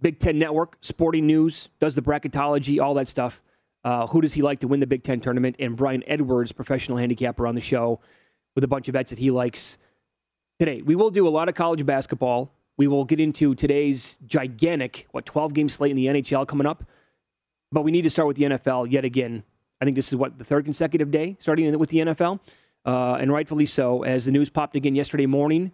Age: 30-49